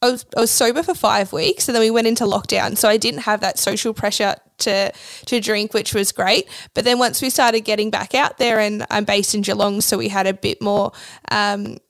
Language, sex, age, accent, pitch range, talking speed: English, female, 20-39, Australian, 200-235 Hz, 240 wpm